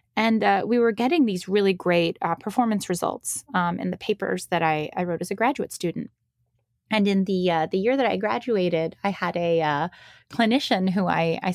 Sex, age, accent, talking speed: female, 20-39, American, 210 wpm